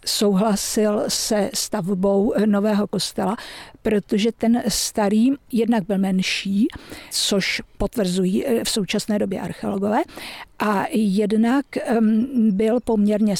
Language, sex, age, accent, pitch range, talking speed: Czech, female, 50-69, native, 200-235 Hz, 95 wpm